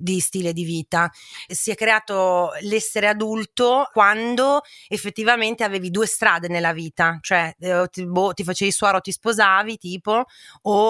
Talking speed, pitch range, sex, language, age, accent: 160 wpm, 165-220 Hz, female, Italian, 30-49, native